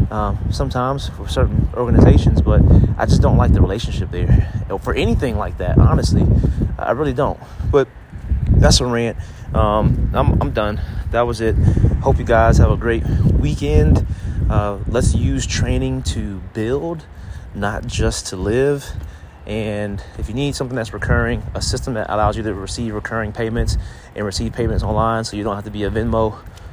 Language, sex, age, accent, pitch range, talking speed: English, male, 30-49, American, 95-115 Hz, 175 wpm